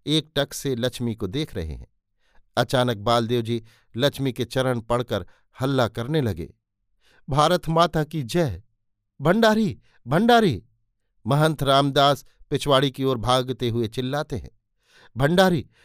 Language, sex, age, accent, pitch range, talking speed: Hindi, male, 50-69, native, 110-145 Hz, 130 wpm